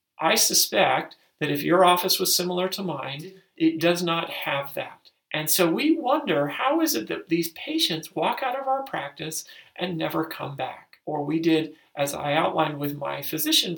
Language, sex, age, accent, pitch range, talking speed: English, male, 40-59, American, 150-195 Hz, 185 wpm